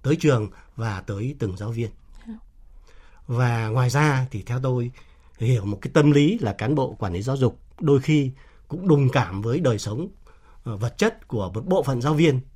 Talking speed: 195 wpm